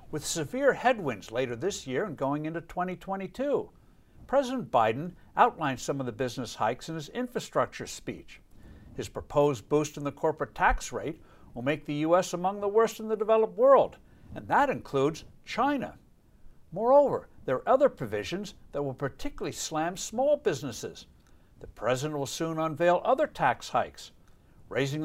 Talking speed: 155 wpm